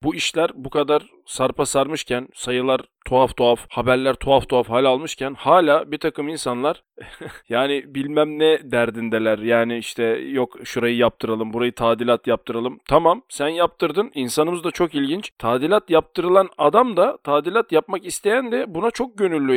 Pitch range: 125-175 Hz